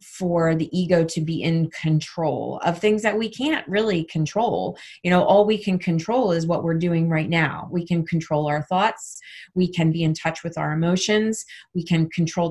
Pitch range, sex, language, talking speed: 160-185 Hz, female, English, 200 wpm